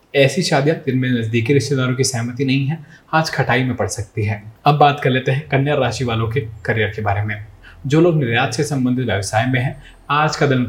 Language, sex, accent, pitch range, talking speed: Hindi, male, native, 110-145 Hz, 110 wpm